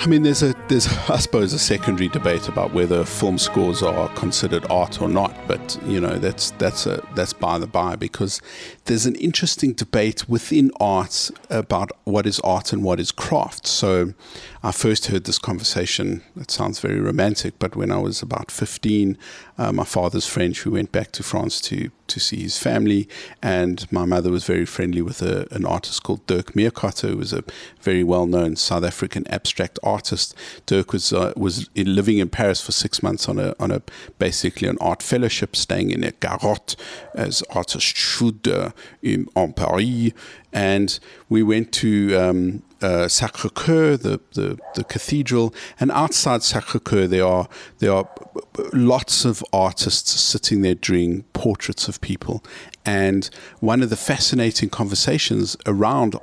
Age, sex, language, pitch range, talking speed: 50-69, male, English, 90-115 Hz, 170 wpm